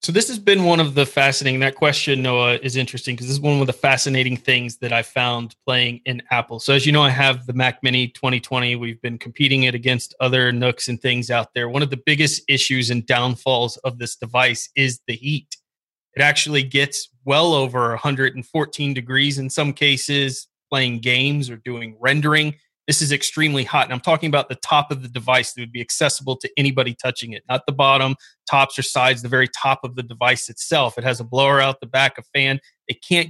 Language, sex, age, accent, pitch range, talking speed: English, male, 30-49, American, 125-145 Hz, 220 wpm